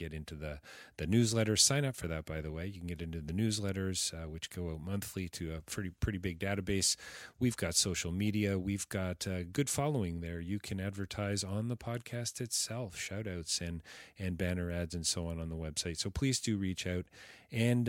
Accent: American